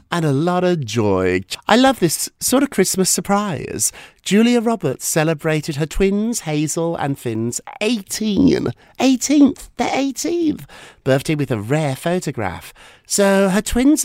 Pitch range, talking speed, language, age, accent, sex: 110-180 Hz, 130 wpm, English, 50-69, British, male